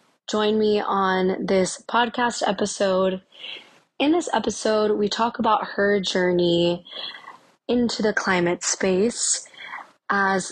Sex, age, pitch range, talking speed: female, 20-39, 190-225 Hz, 110 wpm